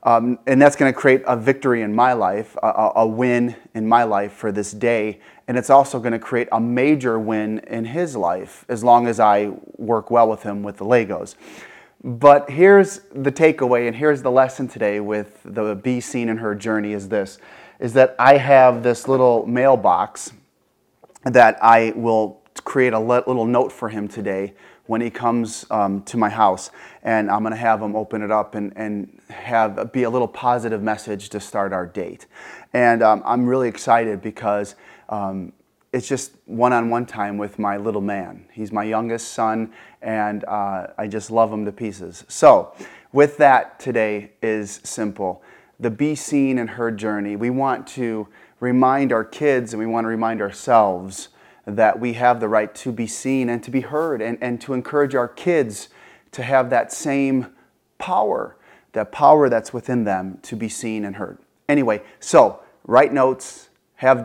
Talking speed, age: 180 wpm, 30-49